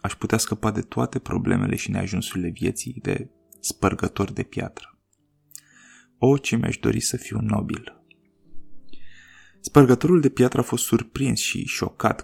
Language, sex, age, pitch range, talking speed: Romanian, male, 20-39, 105-125 Hz, 135 wpm